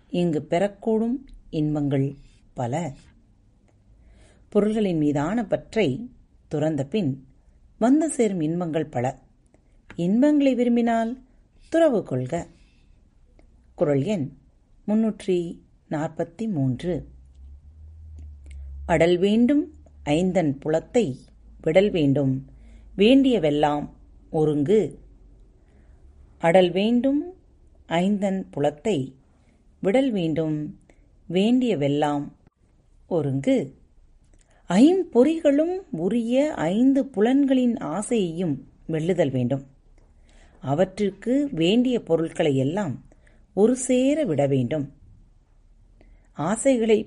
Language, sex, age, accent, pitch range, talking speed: Tamil, female, 30-49, native, 135-225 Hz, 65 wpm